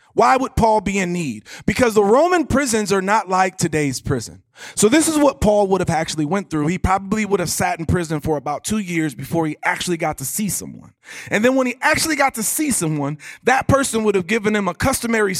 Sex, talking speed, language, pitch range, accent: male, 235 wpm, English, 155-215 Hz, American